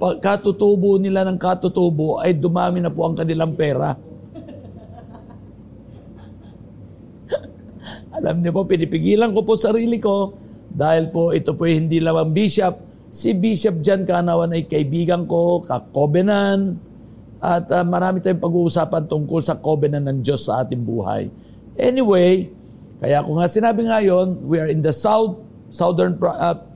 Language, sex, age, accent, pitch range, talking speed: Filipino, male, 50-69, native, 155-190 Hz, 140 wpm